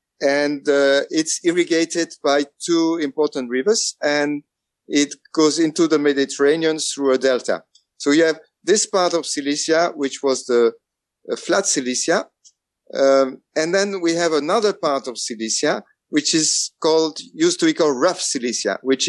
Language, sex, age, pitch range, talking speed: English, male, 50-69, 135-170 Hz, 155 wpm